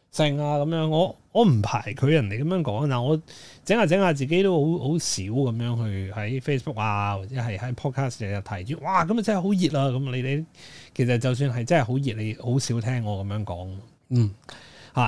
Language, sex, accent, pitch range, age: Chinese, male, native, 110-150 Hz, 20-39